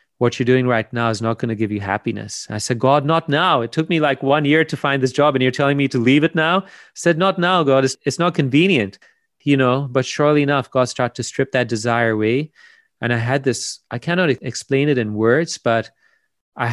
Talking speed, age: 245 wpm, 30-49